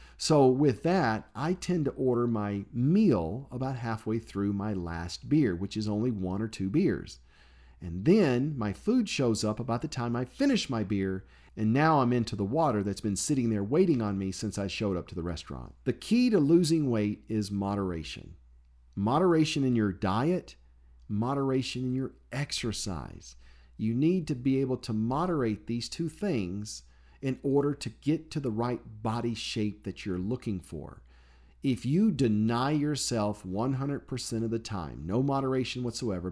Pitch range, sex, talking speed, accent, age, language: 95-130 Hz, male, 170 wpm, American, 50-69, English